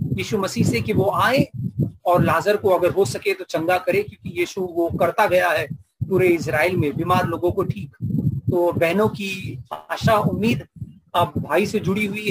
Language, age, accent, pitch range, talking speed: English, 30-49, Indian, 165-215 Hz, 185 wpm